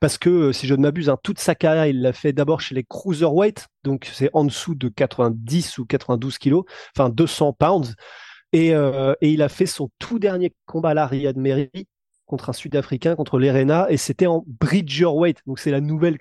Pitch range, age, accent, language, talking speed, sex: 135-170 Hz, 20-39, French, French, 205 wpm, male